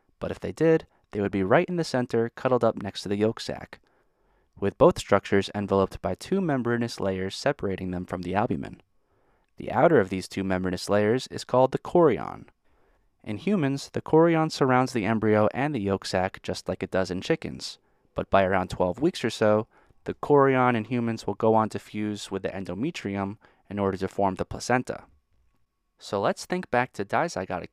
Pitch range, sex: 95-125 Hz, male